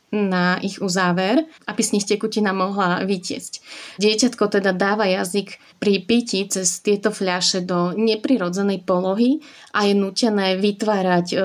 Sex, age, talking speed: female, 30-49, 130 wpm